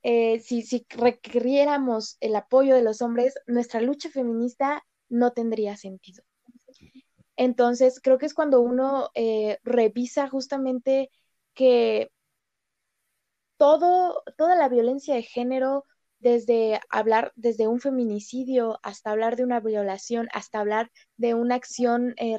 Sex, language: female, Spanish